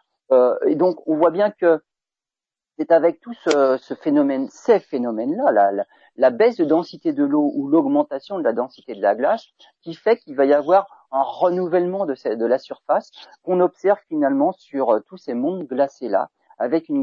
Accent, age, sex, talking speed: French, 40-59, male, 180 wpm